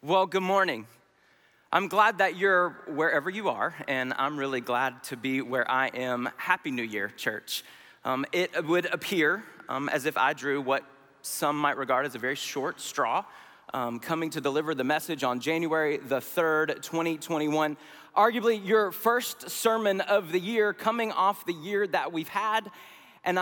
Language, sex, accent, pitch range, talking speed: English, male, American, 125-175 Hz, 170 wpm